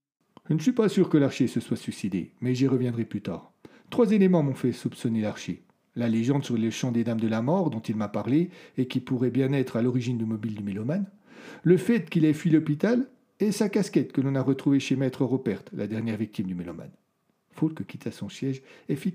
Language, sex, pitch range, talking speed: French, male, 120-175 Hz, 230 wpm